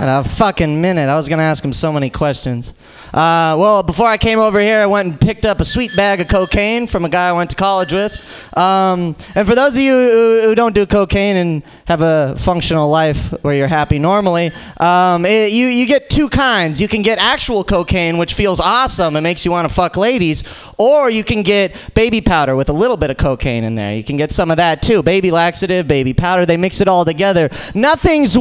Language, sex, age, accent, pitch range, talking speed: English, male, 20-39, American, 155-215 Hz, 230 wpm